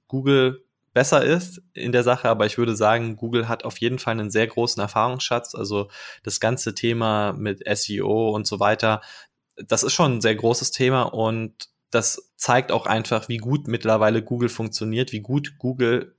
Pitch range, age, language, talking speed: 110-125 Hz, 20-39, German, 180 wpm